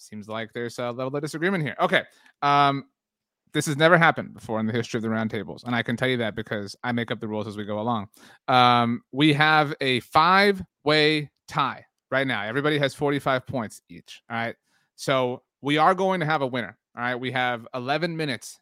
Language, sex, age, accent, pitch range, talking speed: English, male, 30-49, American, 125-165 Hz, 215 wpm